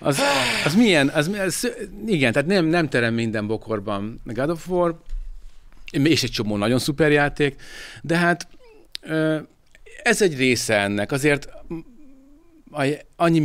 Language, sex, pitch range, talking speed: Hungarian, male, 110-140 Hz, 130 wpm